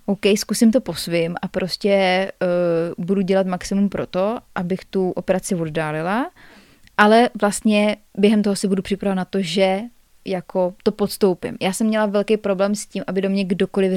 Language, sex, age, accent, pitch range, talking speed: Czech, female, 20-39, native, 180-220 Hz, 175 wpm